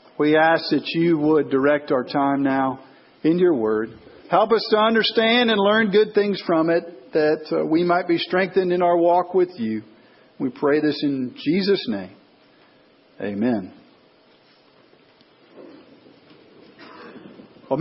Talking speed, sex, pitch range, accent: 135 wpm, male, 145-180 Hz, American